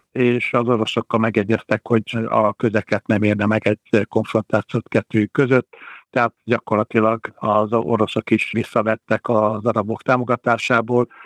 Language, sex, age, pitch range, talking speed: Hungarian, male, 60-79, 110-120 Hz, 125 wpm